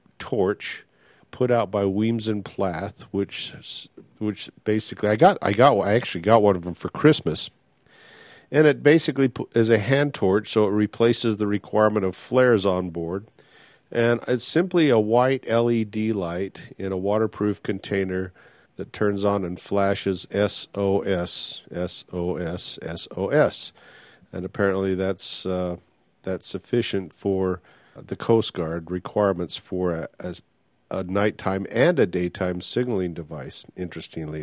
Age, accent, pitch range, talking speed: 50-69, American, 90-115 Hz, 135 wpm